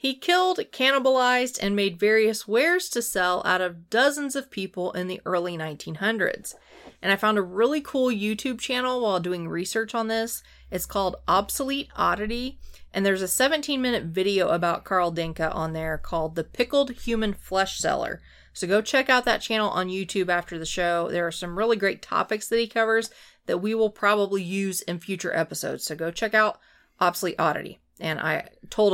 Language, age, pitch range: English, 30-49, 175-235 Hz